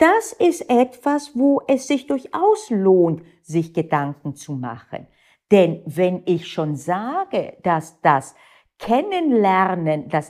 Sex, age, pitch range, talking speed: female, 50-69, 150-210 Hz, 120 wpm